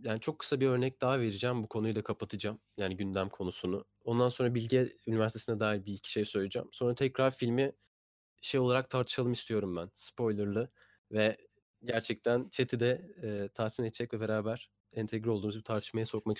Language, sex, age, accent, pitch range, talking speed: Turkish, male, 30-49, native, 105-125 Hz, 165 wpm